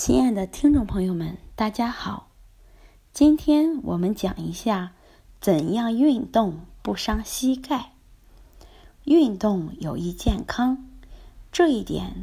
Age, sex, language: 20-39, female, Chinese